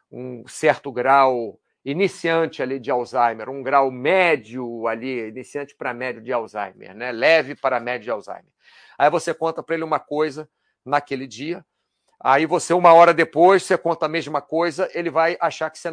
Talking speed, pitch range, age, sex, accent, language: 175 wpm, 125-165 Hz, 50-69, male, Brazilian, Portuguese